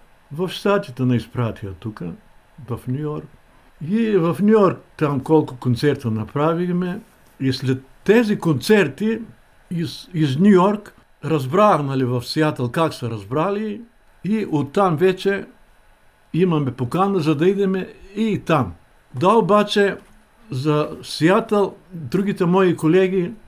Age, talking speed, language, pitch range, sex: 60-79, 125 wpm, Bulgarian, 130-190 Hz, male